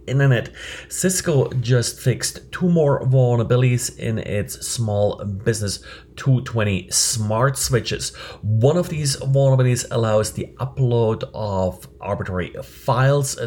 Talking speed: 105 wpm